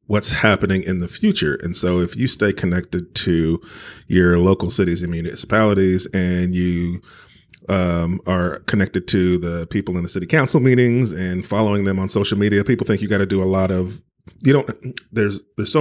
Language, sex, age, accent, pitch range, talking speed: English, male, 30-49, American, 90-105 Hz, 190 wpm